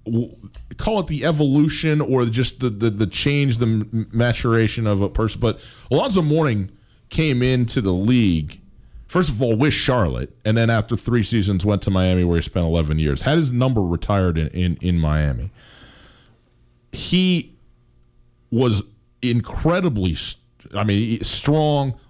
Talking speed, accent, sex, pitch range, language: 150 wpm, American, male, 105-135 Hz, English